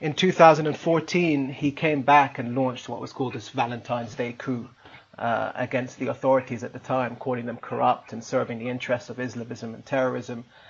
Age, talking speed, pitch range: 30-49, 180 wpm, 120-135 Hz